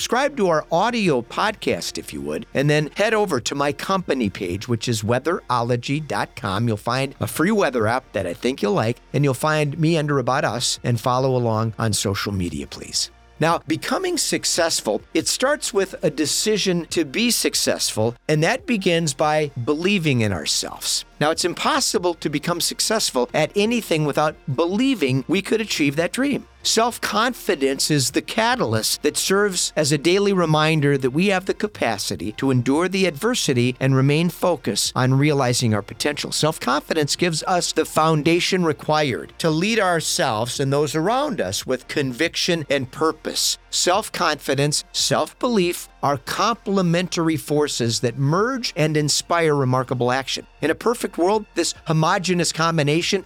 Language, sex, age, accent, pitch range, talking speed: English, male, 50-69, American, 135-185 Hz, 155 wpm